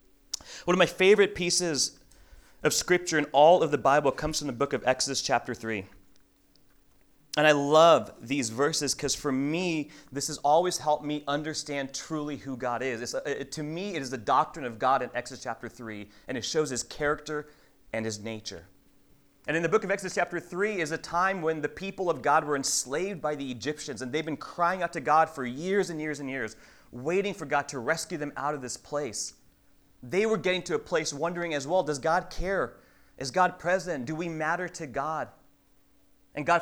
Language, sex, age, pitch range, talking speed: English, male, 30-49, 130-165 Hz, 210 wpm